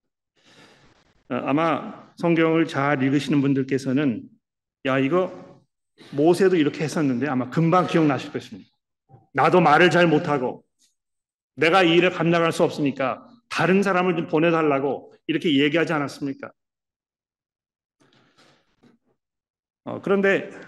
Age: 40-59